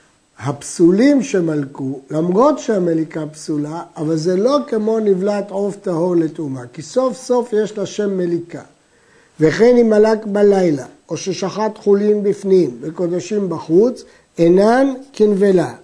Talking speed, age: 120 wpm, 60-79